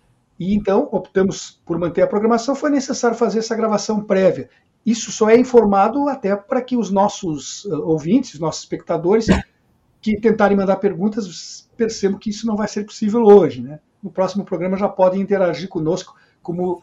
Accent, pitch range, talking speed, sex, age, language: Brazilian, 185-230 Hz, 170 wpm, male, 50-69, Portuguese